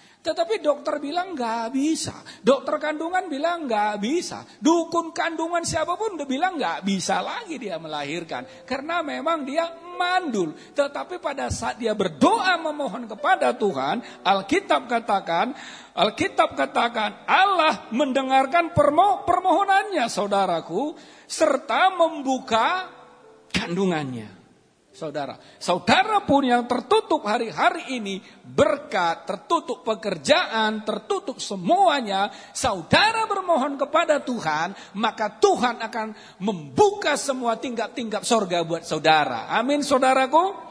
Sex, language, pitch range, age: male, Indonesian, 215-330 Hz, 40-59